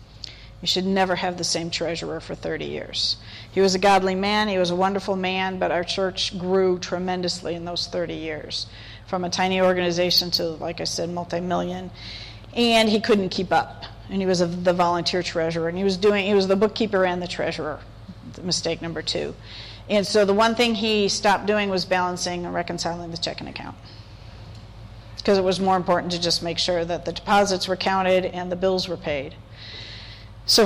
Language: English